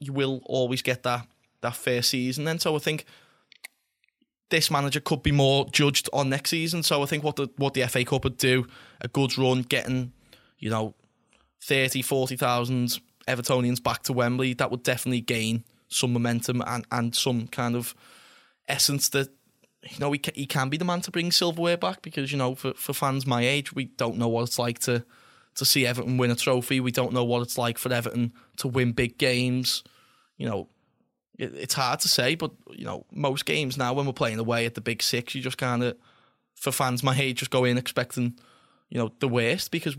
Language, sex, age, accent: English, male, 10-29, British